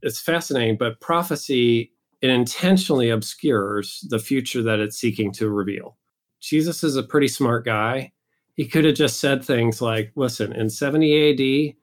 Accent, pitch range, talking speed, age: American, 110-135 Hz, 150 wpm, 40-59